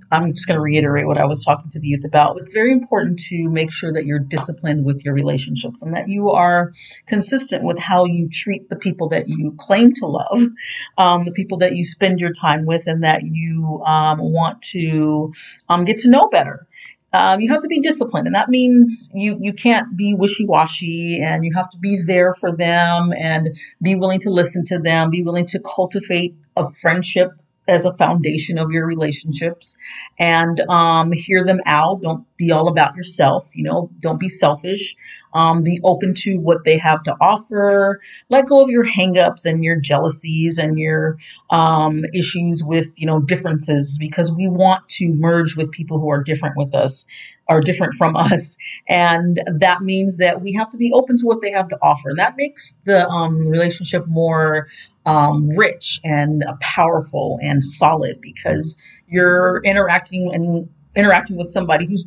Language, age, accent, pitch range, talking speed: English, 40-59, American, 155-190 Hz, 190 wpm